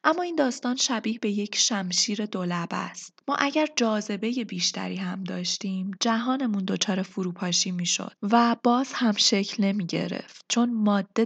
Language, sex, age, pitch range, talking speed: Persian, female, 20-39, 185-235 Hz, 145 wpm